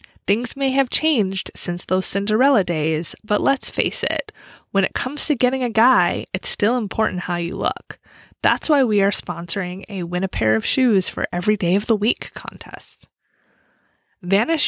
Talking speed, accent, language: 180 wpm, American, English